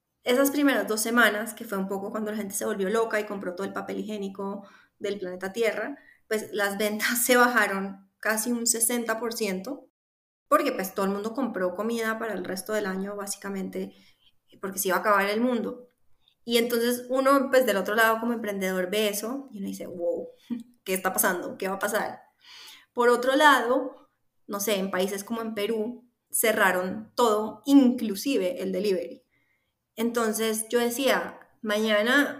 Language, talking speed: Spanish, 170 wpm